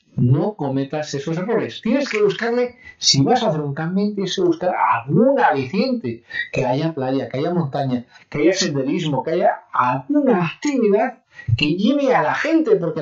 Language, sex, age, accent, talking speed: English, male, 40-59, Spanish, 170 wpm